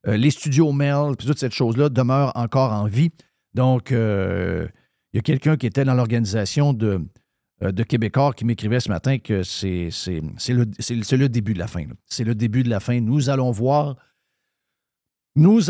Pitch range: 110-135 Hz